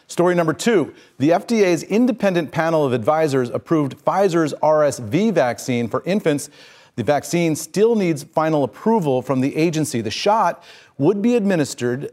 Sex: male